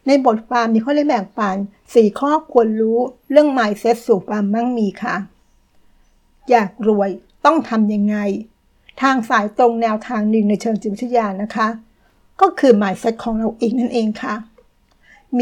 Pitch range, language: 215-245 Hz, Thai